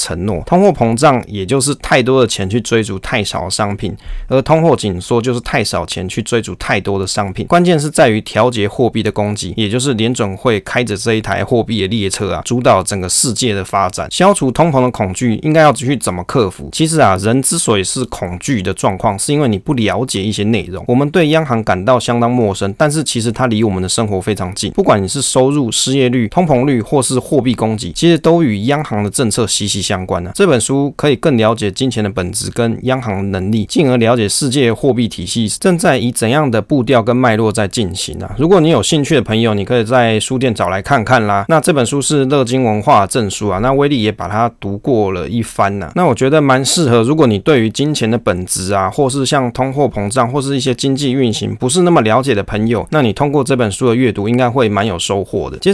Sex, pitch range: male, 105-135 Hz